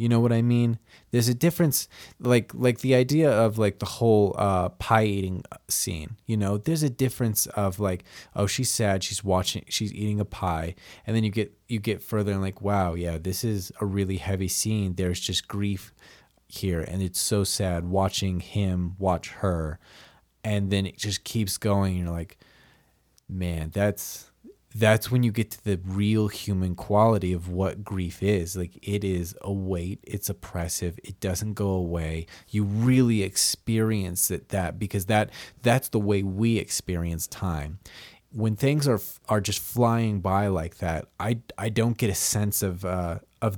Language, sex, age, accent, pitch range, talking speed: English, male, 20-39, American, 90-110 Hz, 180 wpm